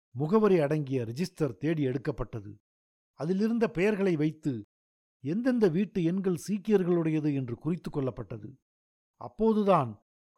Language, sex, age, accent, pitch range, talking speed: Tamil, male, 50-69, native, 135-185 Hz, 95 wpm